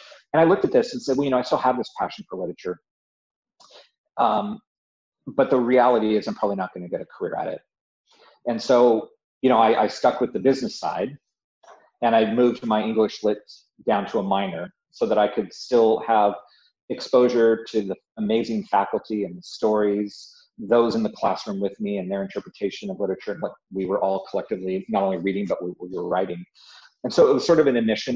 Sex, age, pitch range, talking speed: male, 40-59, 100-125 Hz, 215 wpm